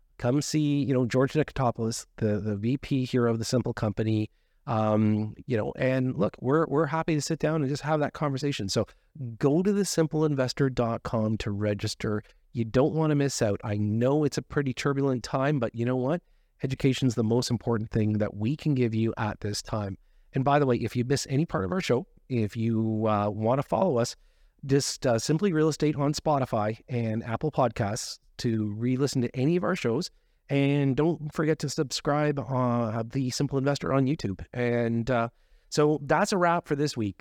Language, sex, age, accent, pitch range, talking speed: English, male, 40-59, American, 115-145 Hz, 200 wpm